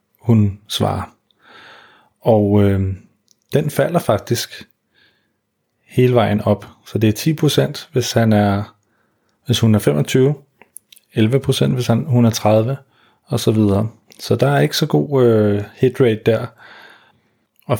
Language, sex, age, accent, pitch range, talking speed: Danish, male, 30-49, native, 105-120 Hz, 135 wpm